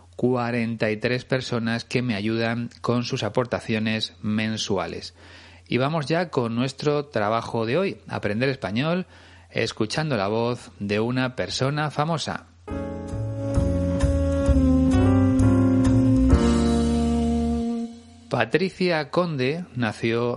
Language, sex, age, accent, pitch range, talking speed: Spanish, male, 40-59, Spanish, 95-130 Hz, 85 wpm